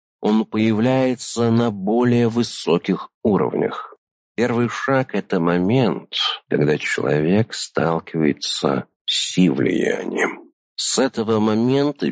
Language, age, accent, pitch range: Russian, 50-69, native, 90-120 Hz